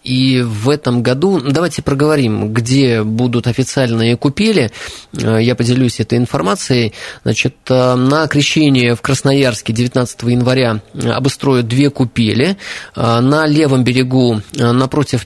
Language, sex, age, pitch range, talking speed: Russian, male, 20-39, 120-140 Hz, 110 wpm